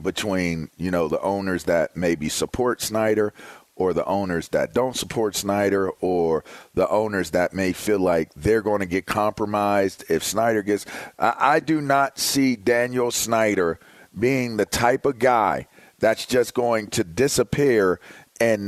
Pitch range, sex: 110-170 Hz, male